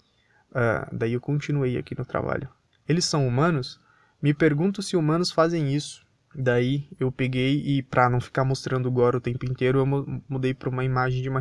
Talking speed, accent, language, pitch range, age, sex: 190 wpm, Brazilian, Portuguese, 125-150 Hz, 20-39, male